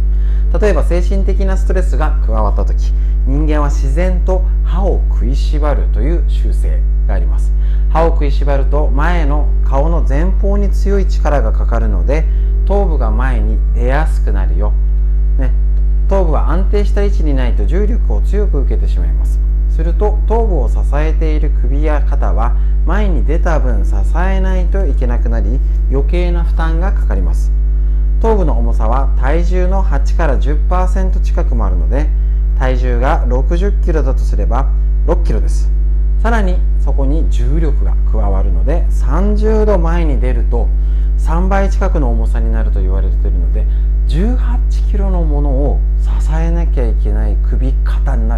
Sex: male